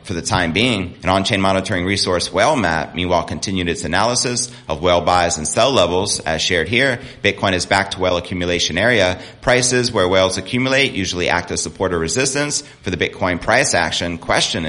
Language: English